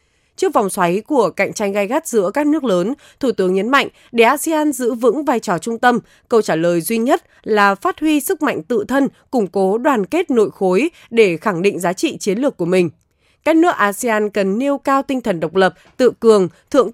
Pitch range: 190-275 Hz